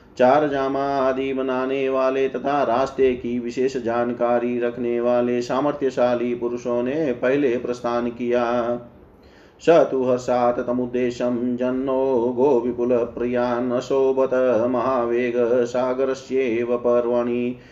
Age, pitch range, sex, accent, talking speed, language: 30-49, 120-130 Hz, male, native, 75 wpm, Hindi